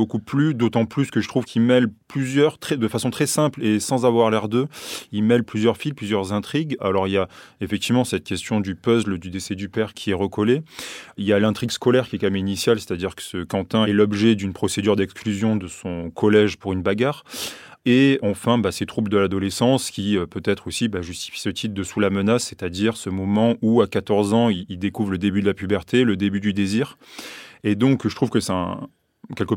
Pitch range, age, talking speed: 100-120 Hz, 20-39, 225 wpm